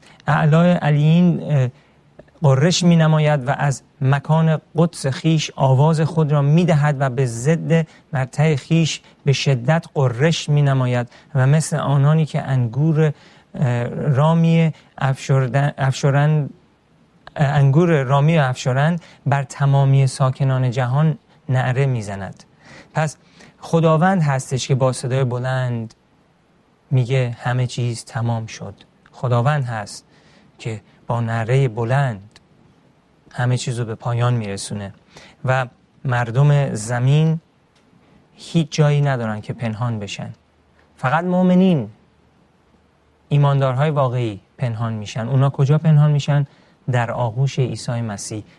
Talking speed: 105 wpm